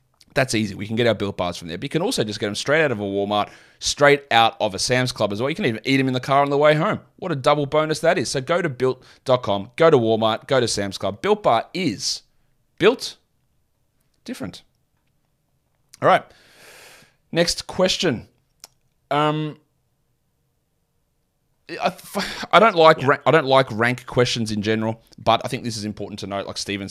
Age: 30-49